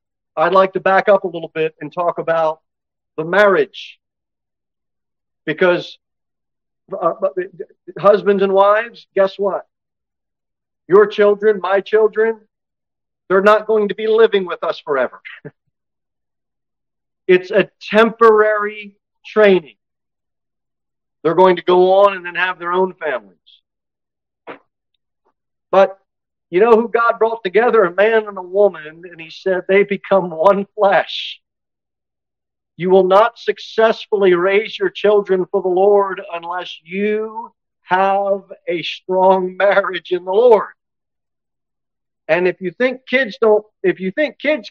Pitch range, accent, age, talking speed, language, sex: 175-215 Hz, American, 50-69, 125 wpm, English, male